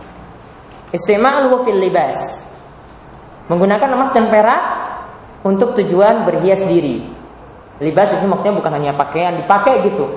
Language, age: English, 20-39